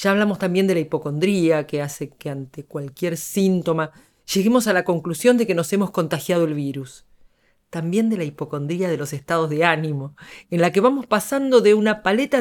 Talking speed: 195 wpm